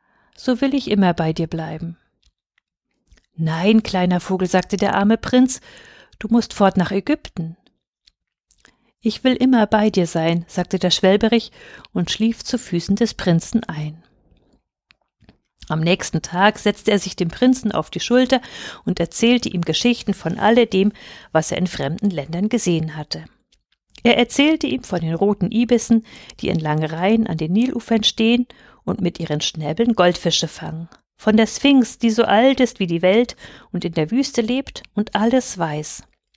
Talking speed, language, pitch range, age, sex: 160 wpm, German, 170-230 Hz, 50-69, female